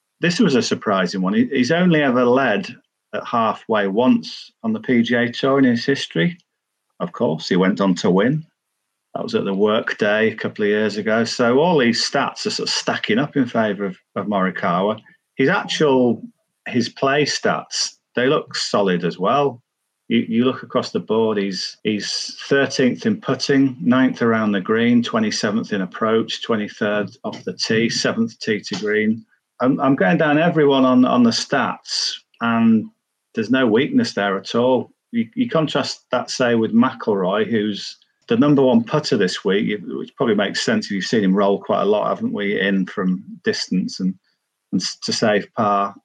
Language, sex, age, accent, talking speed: English, male, 40-59, British, 180 wpm